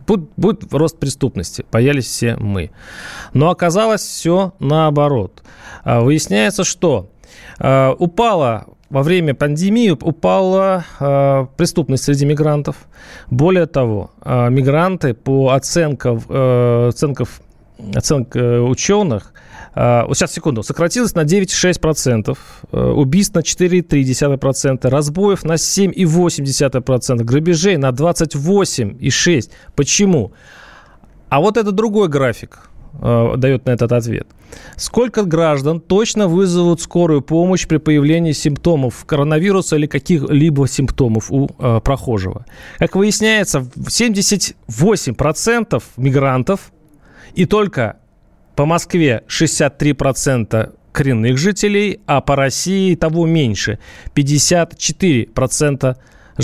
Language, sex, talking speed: Russian, male, 95 wpm